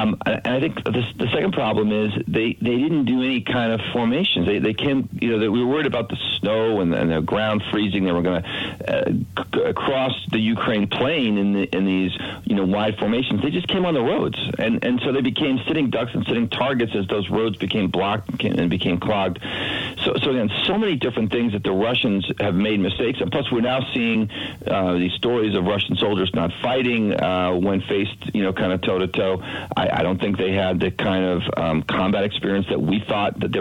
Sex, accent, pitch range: male, American, 90-115 Hz